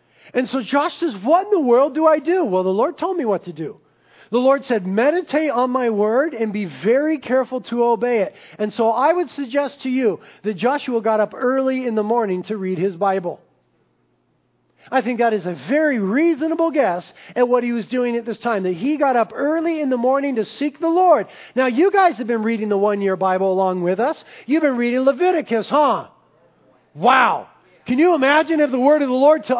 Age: 40-59